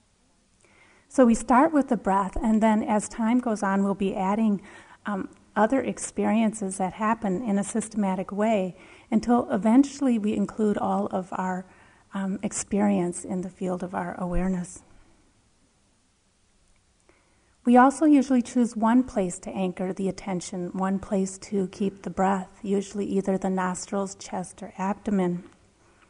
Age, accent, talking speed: 30-49, American, 145 wpm